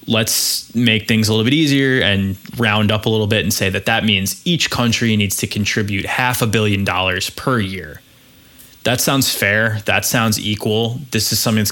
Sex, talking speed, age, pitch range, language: male, 200 wpm, 20-39, 100-120 Hz, English